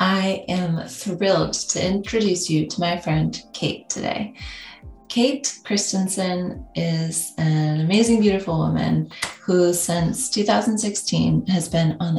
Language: English